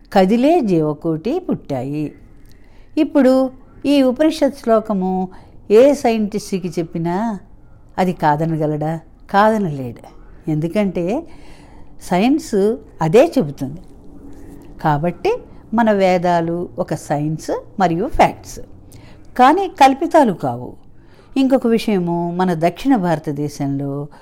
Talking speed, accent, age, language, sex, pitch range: 80 wpm, native, 50-69, Telugu, female, 155-235 Hz